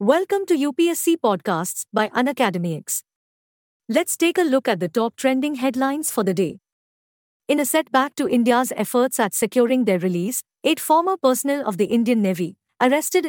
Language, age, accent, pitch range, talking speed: English, 50-69, Indian, 210-280 Hz, 165 wpm